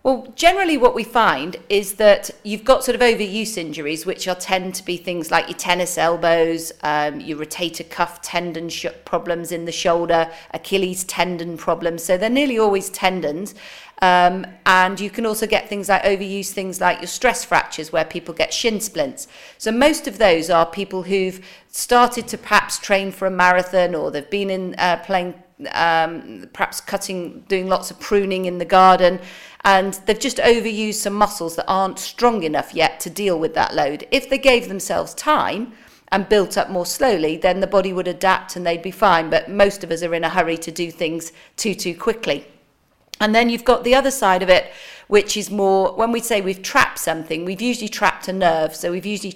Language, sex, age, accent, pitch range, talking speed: English, female, 40-59, British, 170-210 Hz, 200 wpm